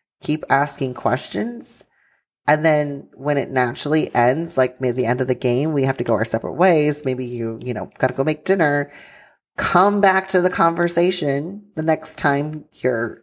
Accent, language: American, English